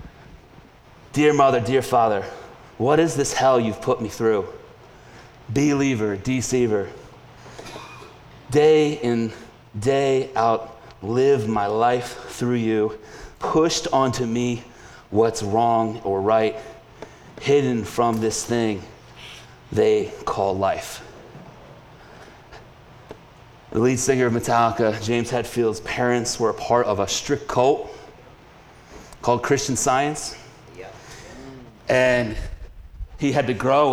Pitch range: 115-195 Hz